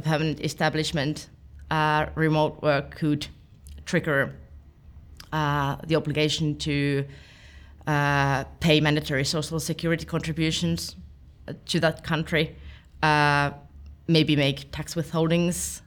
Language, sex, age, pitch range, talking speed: English, female, 20-39, 135-160 Hz, 95 wpm